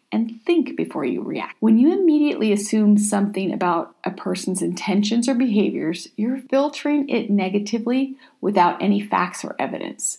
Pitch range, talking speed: 195-255 Hz, 145 wpm